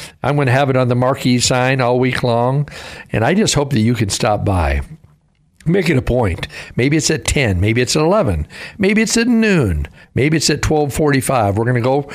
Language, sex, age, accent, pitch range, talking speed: English, male, 60-79, American, 110-140 Hz, 220 wpm